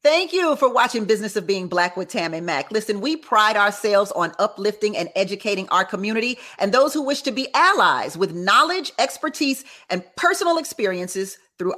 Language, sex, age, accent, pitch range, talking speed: English, female, 40-59, American, 205-315 Hz, 185 wpm